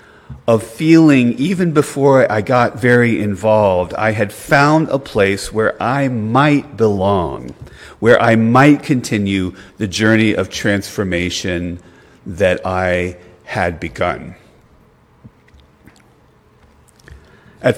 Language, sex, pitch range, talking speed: English, male, 95-120 Hz, 100 wpm